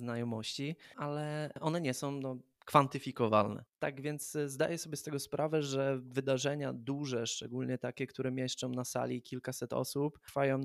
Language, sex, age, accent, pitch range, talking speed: Polish, male, 20-39, native, 125-150 Hz, 140 wpm